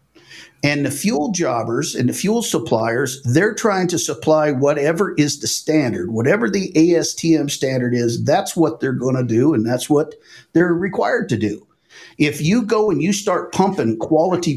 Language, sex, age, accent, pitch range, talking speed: English, male, 50-69, American, 115-160 Hz, 175 wpm